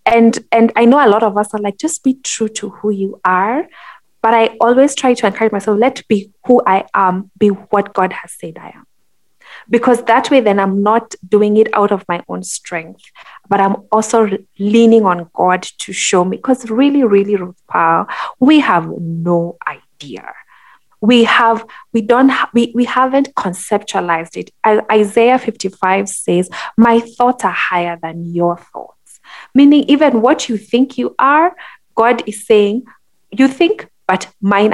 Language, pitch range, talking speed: English, 185-235 Hz, 180 wpm